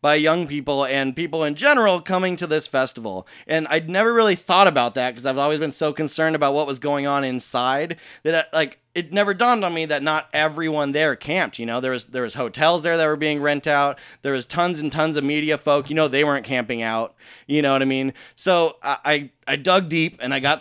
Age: 20-39